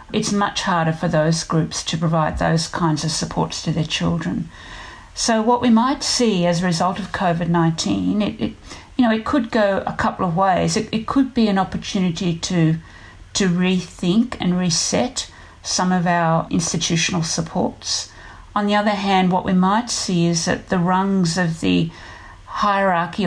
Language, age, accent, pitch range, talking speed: English, 50-69, Australian, 160-185 Hz, 170 wpm